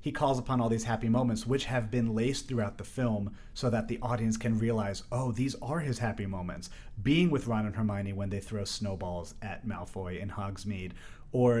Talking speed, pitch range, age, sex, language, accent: 205 wpm, 105-130 Hz, 30-49, male, English, American